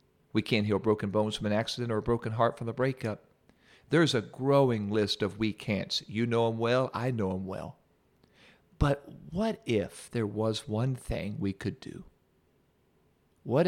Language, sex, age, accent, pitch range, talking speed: English, male, 50-69, American, 105-140 Hz, 180 wpm